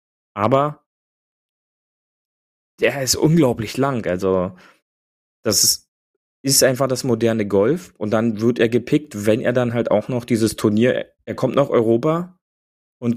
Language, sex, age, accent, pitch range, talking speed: German, male, 30-49, German, 100-120 Hz, 140 wpm